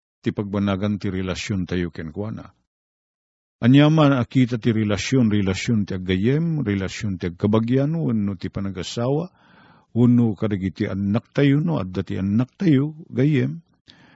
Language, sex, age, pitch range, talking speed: Filipino, male, 50-69, 100-140 Hz, 120 wpm